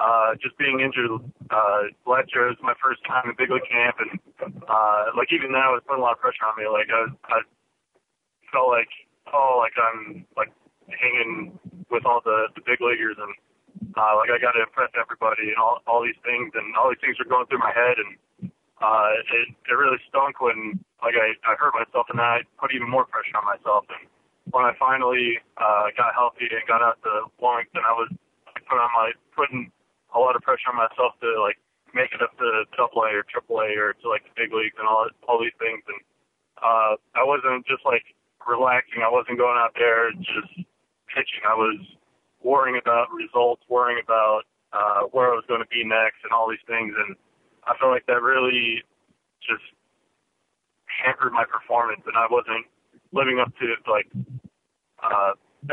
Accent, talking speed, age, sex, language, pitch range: American, 205 wpm, 20-39, male, English, 110-130 Hz